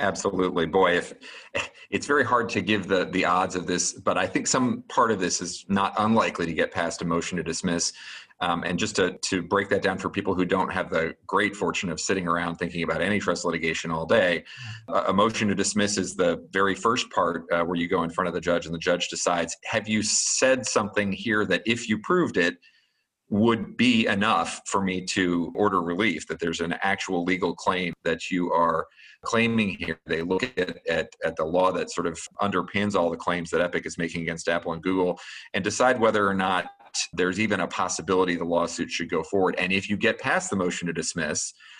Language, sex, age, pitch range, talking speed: English, male, 40-59, 85-105 Hz, 220 wpm